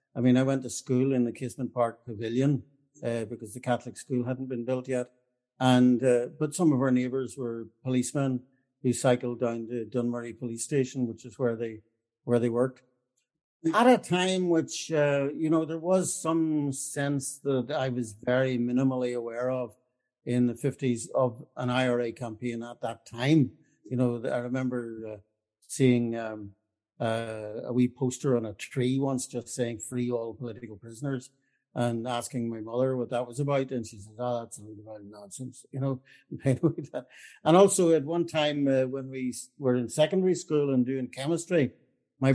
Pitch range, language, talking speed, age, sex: 120-135 Hz, English, 180 wpm, 60-79, male